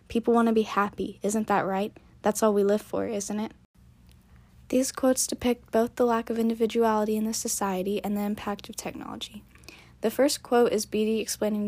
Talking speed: 190 wpm